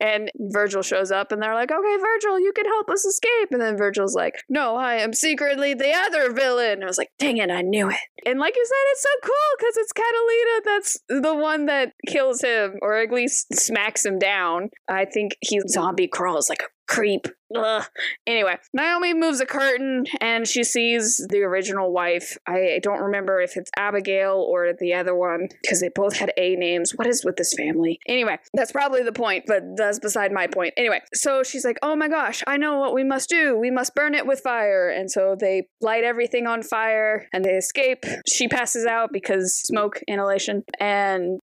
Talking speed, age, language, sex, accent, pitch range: 205 wpm, 20-39, English, female, American, 200-270 Hz